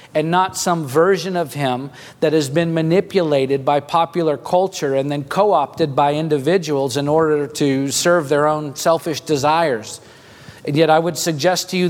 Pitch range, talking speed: 140-175 Hz, 165 wpm